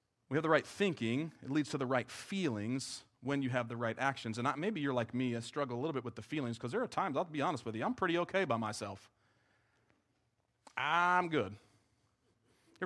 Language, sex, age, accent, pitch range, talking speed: English, male, 40-59, American, 115-175 Hz, 220 wpm